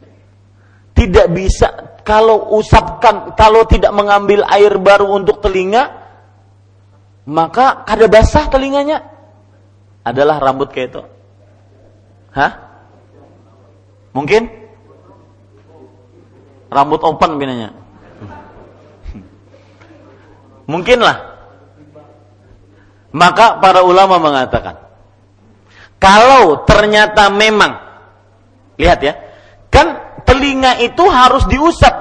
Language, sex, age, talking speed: Malay, male, 40-59, 70 wpm